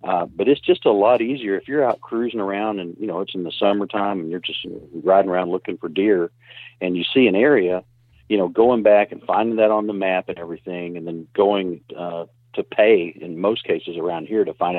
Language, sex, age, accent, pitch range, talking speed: English, male, 50-69, American, 90-120 Hz, 230 wpm